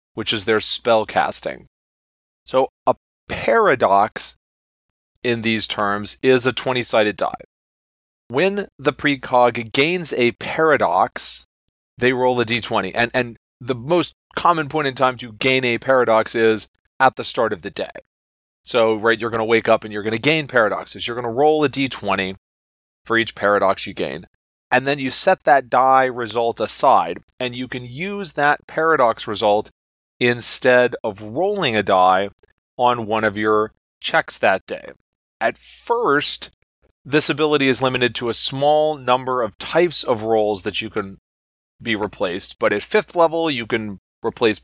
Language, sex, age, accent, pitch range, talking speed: English, male, 30-49, American, 110-140 Hz, 160 wpm